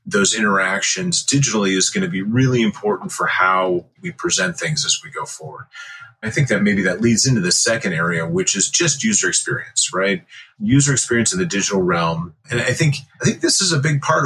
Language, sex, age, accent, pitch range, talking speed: English, male, 30-49, American, 105-170 Hz, 210 wpm